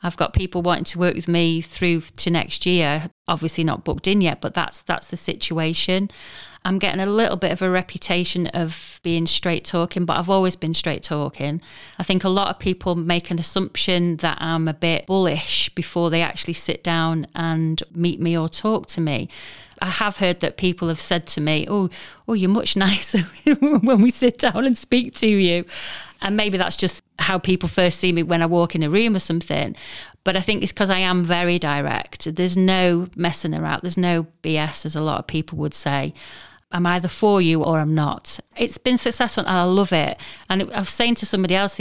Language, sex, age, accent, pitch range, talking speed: English, female, 30-49, British, 165-195 Hz, 215 wpm